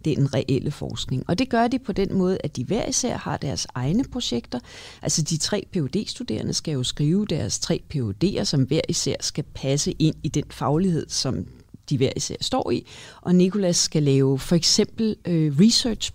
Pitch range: 145-195 Hz